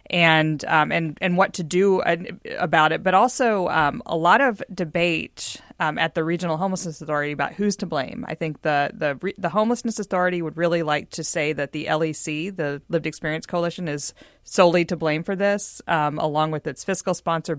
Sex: female